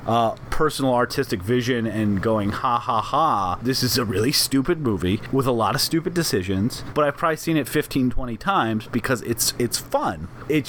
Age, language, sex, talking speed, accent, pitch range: 30-49, English, male, 190 wpm, American, 120-165 Hz